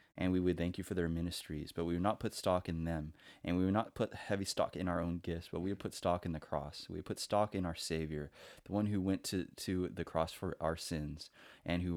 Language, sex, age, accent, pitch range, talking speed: English, male, 20-39, American, 80-95 Hz, 275 wpm